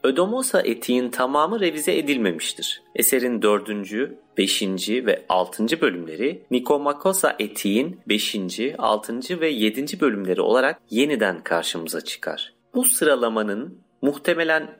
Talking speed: 100 wpm